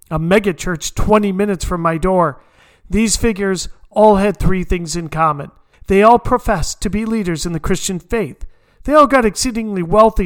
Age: 40-59